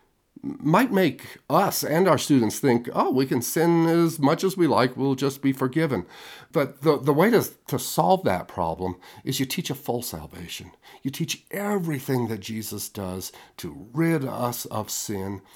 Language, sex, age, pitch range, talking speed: English, male, 50-69, 130-175 Hz, 175 wpm